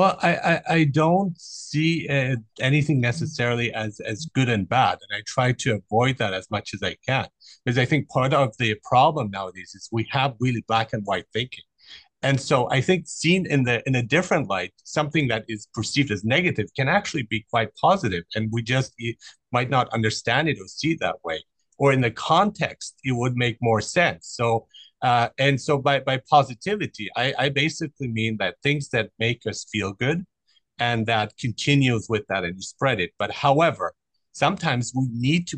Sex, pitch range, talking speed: male, 110-145 Hz, 195 wpm